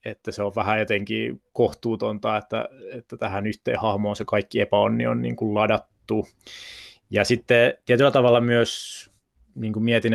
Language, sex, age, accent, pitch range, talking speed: Finnish, male, 20-39, native, 105-120 Hz, 150 wpm